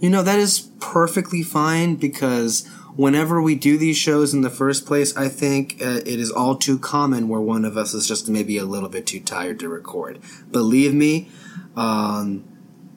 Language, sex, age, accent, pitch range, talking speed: English, male, 20-39, American, 125-150 Hz, 185 wpm